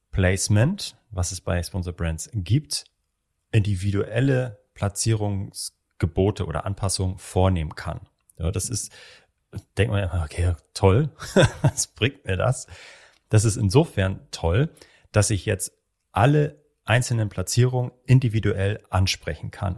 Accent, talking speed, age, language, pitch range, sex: German, 115 wpm, 30-49, German, 95-120 Hz, male